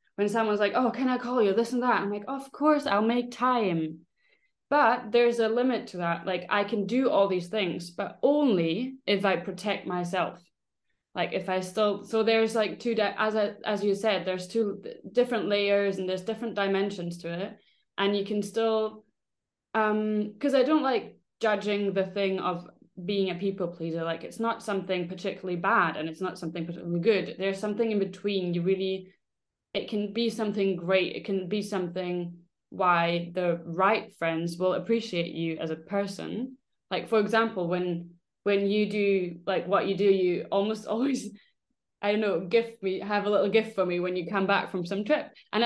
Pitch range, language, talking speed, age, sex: 185-220 Hz, English, 195 wpm, 20-39, female